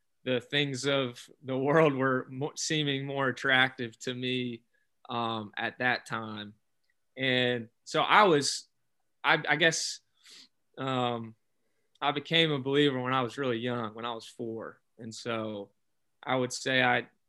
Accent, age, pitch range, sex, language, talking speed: American, 20-39, 125-150 Hz, male, English, 145 wpm